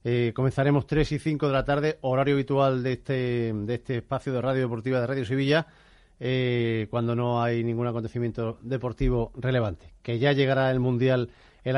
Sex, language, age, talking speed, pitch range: male, Spanish, 40-59, 180 wpm, 120-145 Hz